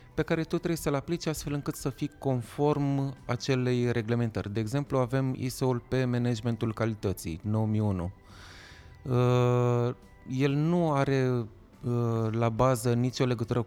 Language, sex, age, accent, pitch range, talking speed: Romanian, male, 20-39, native, 115-135 Hz, 125 wpm